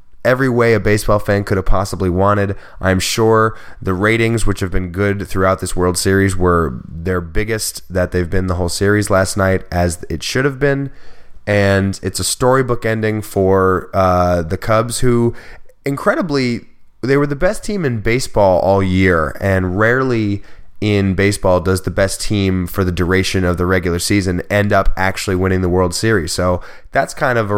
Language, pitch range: English, 90-110 Hz